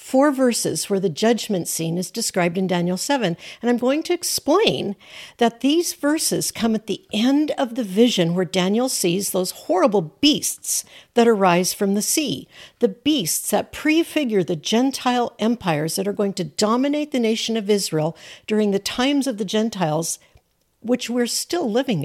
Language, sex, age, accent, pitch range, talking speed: English, female, 60-79, American, 185-270 Hz, 170 wpm